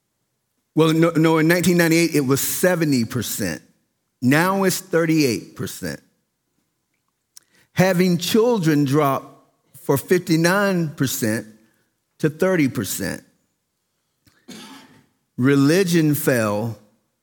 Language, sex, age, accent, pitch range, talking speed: English, male, 40-59, American, 120-155 Hz, 80 wpm